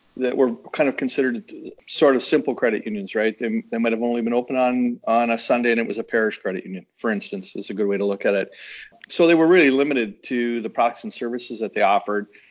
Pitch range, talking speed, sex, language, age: 115-140 Hz, 250 wpm, male, English, 40-59